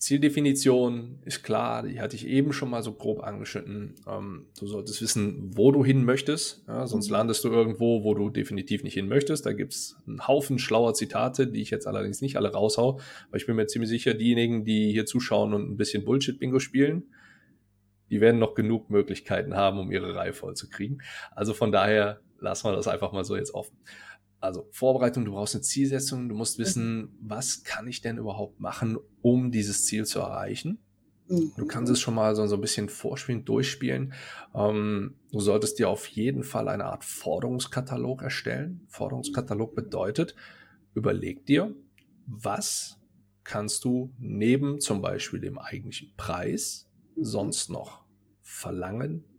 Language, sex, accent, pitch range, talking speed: German, male, German, 105-130 Hz, 165 wpm